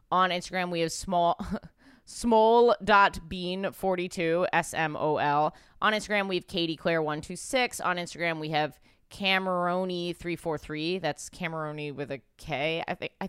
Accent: American